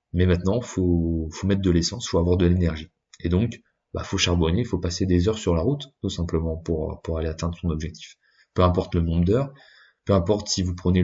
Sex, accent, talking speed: male, French, 240 wpm